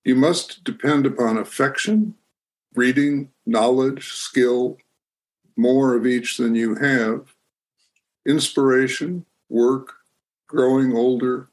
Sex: male